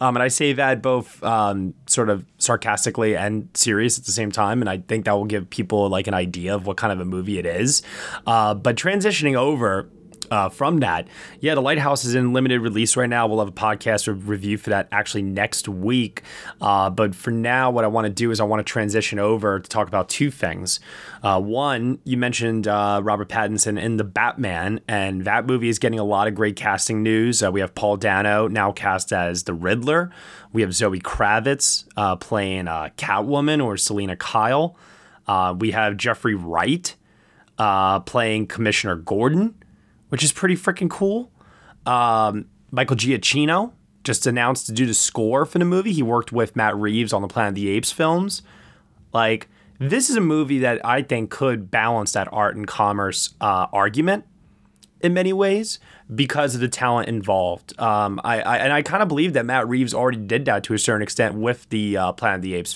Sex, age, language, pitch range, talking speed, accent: male, 20-39, English, 100-130 Hz, 200 wpm, American